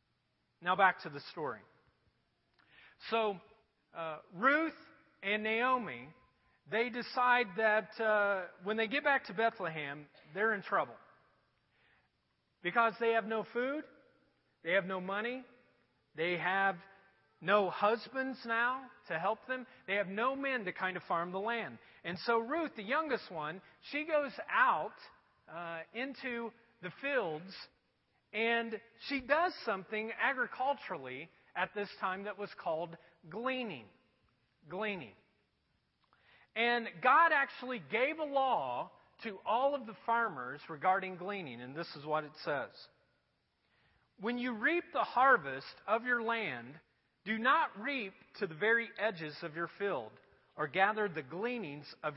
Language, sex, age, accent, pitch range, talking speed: English, male, 40-59, American, 170-240 Hz, 135 wpm